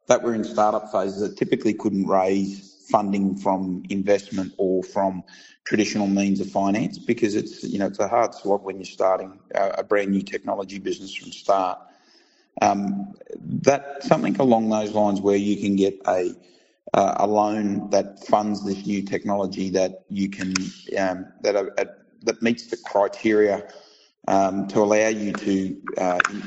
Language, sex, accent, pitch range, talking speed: English, male, Australian, 100-110 Hz, 165 wpm